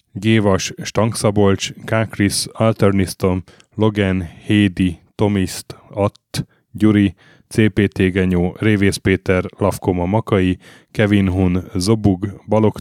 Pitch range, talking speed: 95-110 Hz, 90 wpm